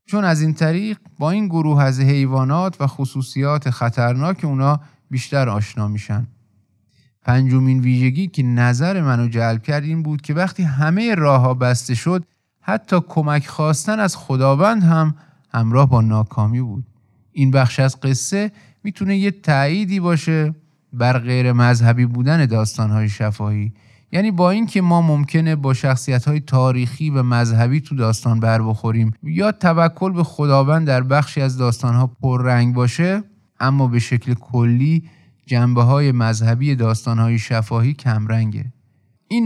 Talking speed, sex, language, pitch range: 140 wpm, male, Persian, 120-160 Hz